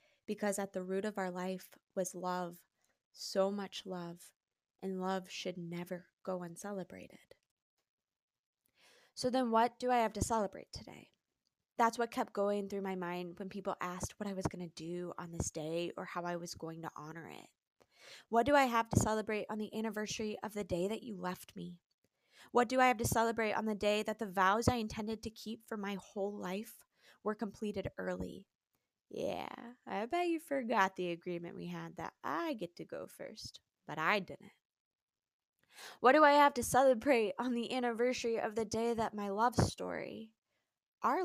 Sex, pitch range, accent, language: female, 185-230 Hz, American, English